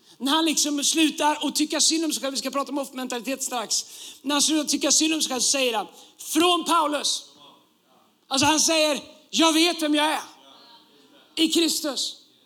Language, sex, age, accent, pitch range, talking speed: Swedish, male, 30-49, native, 280-325 Hz, 180 wpm